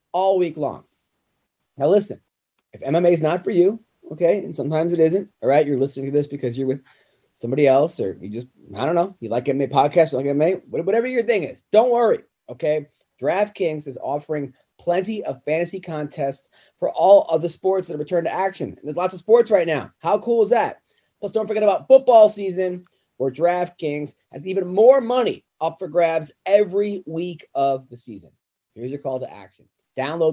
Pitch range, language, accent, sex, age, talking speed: 135-190 Hz, English, American, male, 30-49, 195 wpm